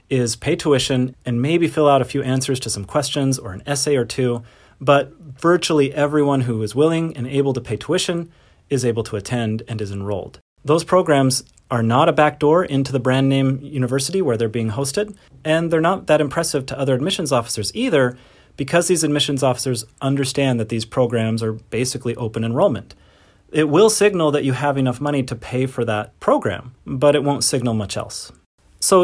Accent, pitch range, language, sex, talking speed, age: American, 120-155 Hz, English, male, 190 wpm, 30-49